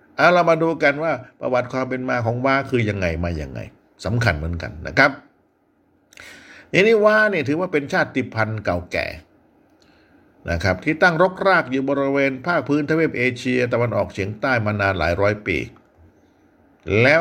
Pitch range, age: 105-140 Hz, 60-79